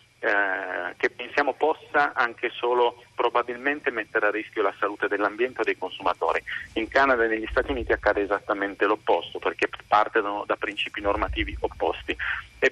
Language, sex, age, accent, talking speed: Italian, male, 40-59, native, 145 wpm